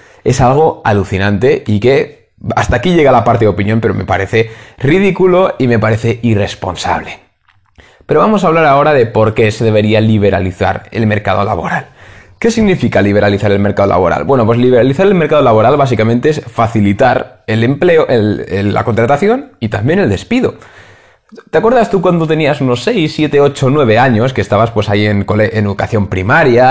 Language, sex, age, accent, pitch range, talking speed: Spanish, male, 20-39, Spanish, 105-145 Hz, 175 wpm